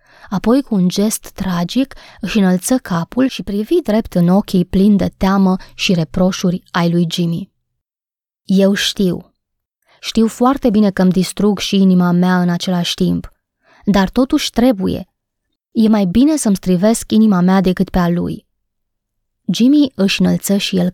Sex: female